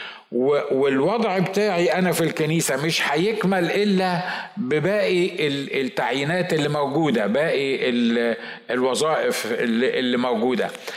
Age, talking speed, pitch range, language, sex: 50-69, 90 wpm, 145-185 Hz, Arabic, male